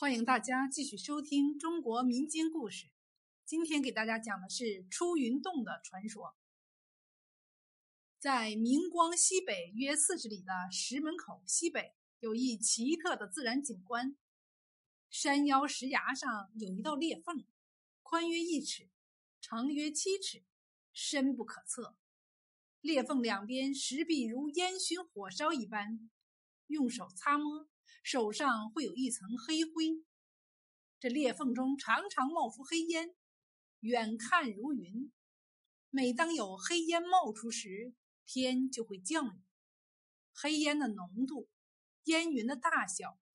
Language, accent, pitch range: Chinese, native, 230-310 Hz